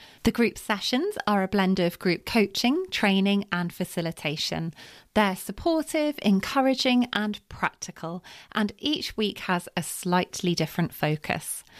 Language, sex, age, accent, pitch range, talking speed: English, female, 30-49, British, 175-235 Hz, 125 wpm